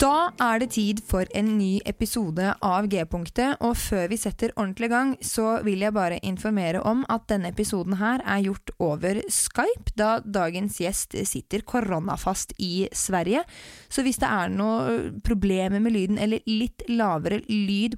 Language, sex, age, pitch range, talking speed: English, female, 20-39, 185-235 Hz, 175 wpm